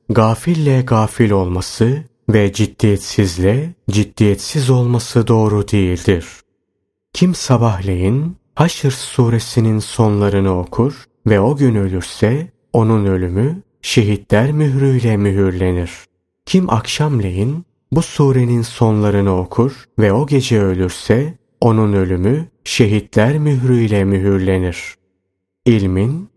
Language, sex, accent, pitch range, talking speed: Turkish, male, native, 100-130 Hz, 90 wpm